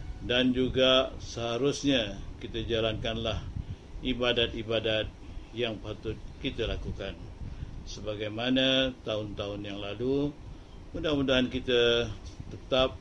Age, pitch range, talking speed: 50-69, 105-130 Hz, 80 wpm